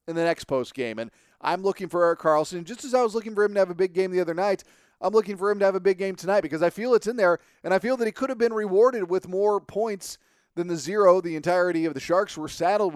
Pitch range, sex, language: 150-200 Hz, male, English